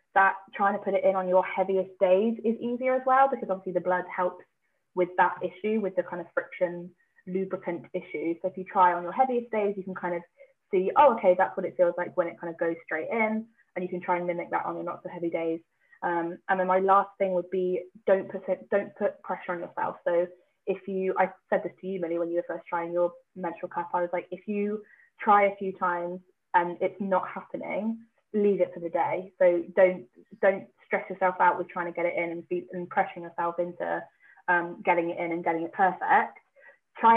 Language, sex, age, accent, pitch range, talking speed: English, female, 20-39, British, 175-195 Hz, 235 wpm